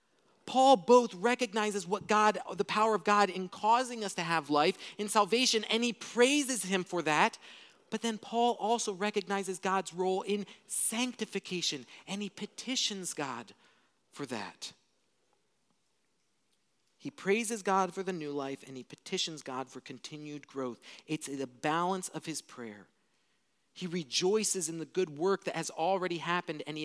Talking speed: 155 wpm